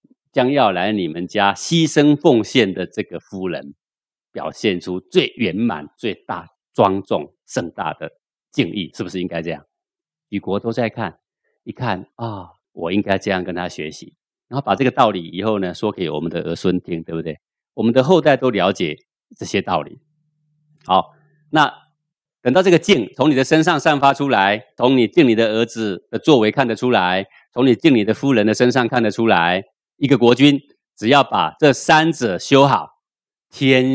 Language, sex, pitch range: Chinese, male, 90-140 Hz